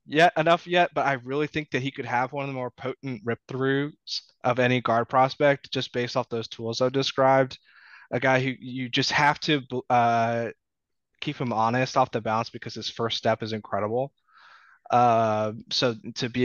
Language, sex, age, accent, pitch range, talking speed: English, male, 20-39, American, 115-135 Hz, 195 wpm